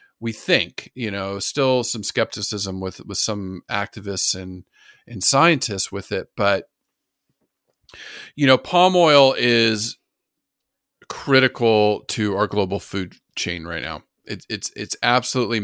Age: 40-59